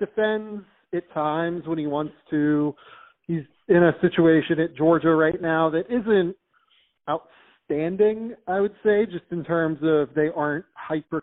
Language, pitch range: English, 150-185 Hz